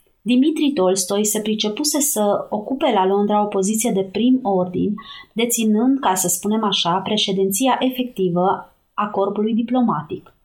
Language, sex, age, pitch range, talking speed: Romanian, female, 30-49, 185-240 Hz, 130 wpm